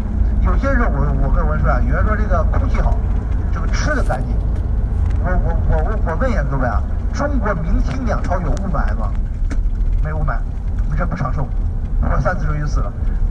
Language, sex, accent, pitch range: Chinese, male, native, 85-110 Hz